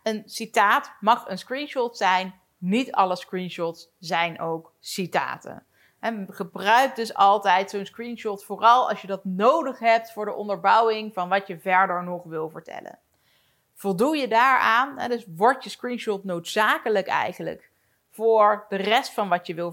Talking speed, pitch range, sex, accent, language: 150 wpm, 185-230 Hz, female, Dutch, Dutch